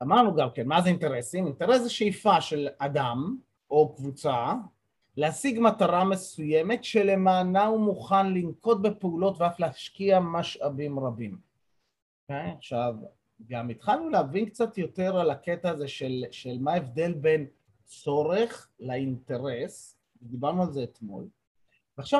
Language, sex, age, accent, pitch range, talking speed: Hebrew, male, 30-49, native, 130-185 Hz, 125 wpm